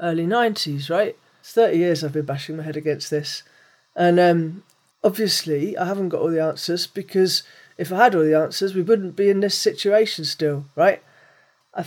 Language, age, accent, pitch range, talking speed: English, 40-59, British, 170-215 Hz, 190 wpm